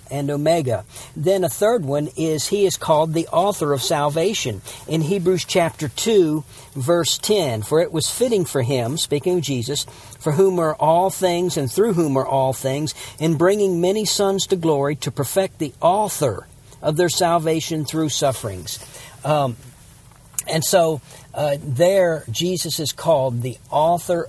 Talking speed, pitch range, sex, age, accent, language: 160 wpm, 130-170 Hz, male, 50-69, American, English